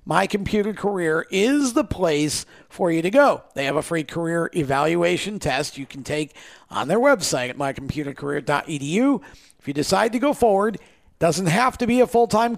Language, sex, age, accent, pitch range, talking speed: English, male, 50-69, American, 150-220 Hz, 175 wpm